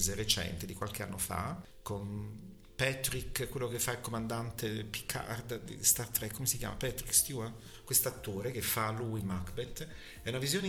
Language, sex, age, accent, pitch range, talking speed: Italian, male, 50-69, native, 105-130 Hz, 170 wpm